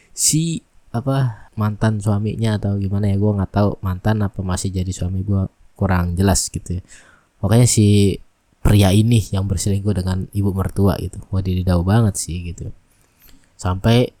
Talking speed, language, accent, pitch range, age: 150 wpm, Indonesian, native, 95-120 Hz, 20-39